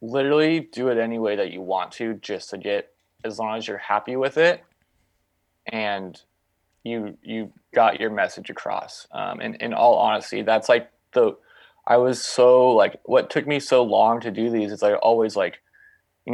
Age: 20-39